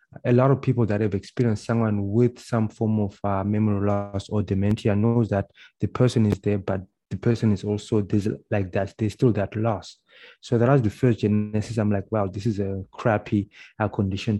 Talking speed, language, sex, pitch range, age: 205 wpm, English, male, 100-115 Hz, 20-39